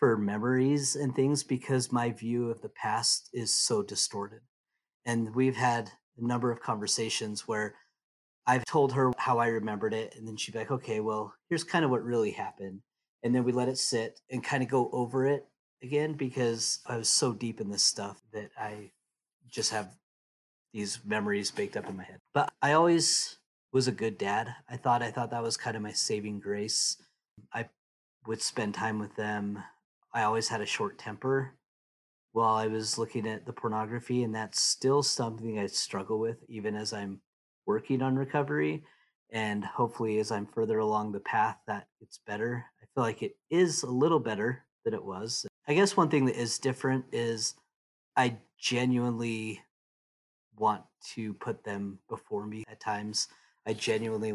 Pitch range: 105-125 Hz